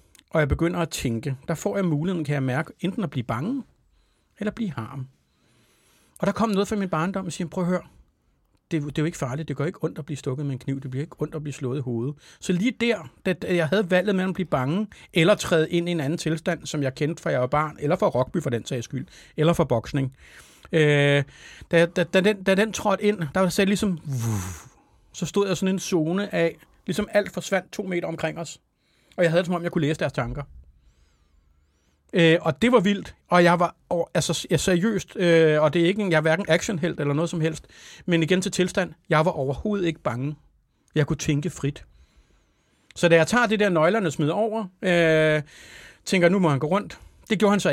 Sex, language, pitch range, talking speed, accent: male, Danish, 145-190 Hz, 240 wpm, native